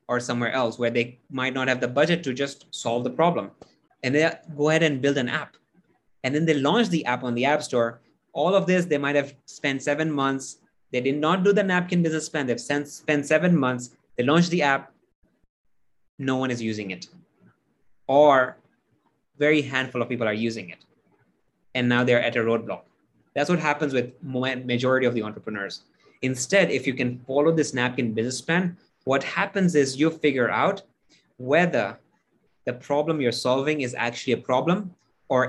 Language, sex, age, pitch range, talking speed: English, male, 20-39, 120-150 Hz, 190 wpm